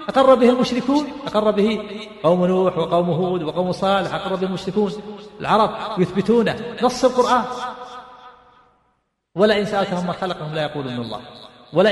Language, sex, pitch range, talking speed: Arabic, male, 180-225 Hz, 130 wpm